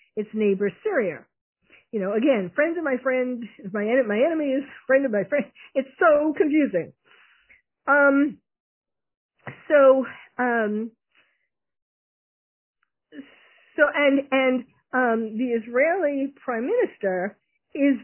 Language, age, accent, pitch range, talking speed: English, 50-69, American, 210-275 Hz, 110 wpm